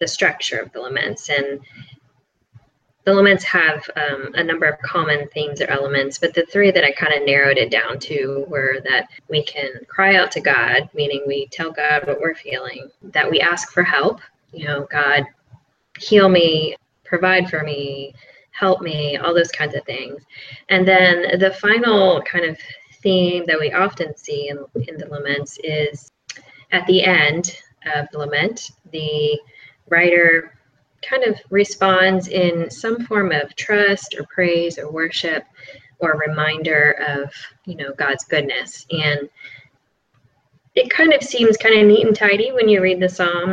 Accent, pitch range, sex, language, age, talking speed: American, 145-190 Hz, female, English, 10-29, 165 wpm